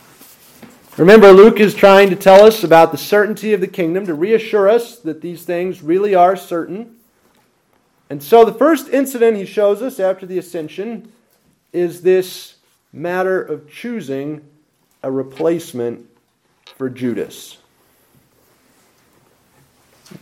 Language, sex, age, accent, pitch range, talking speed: English, male, 30-49, American, 135-190 Hz, 130 wpm